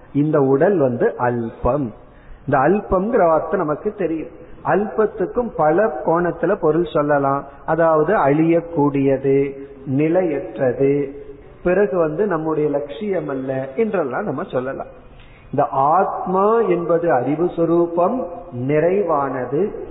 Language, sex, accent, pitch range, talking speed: Tamil, male, native, 145-195 Hz, 90 wpm